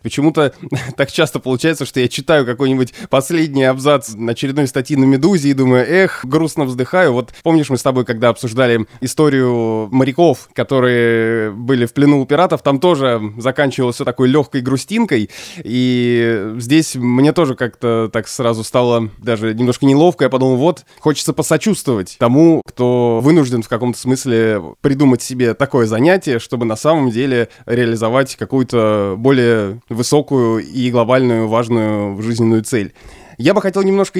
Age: 20-39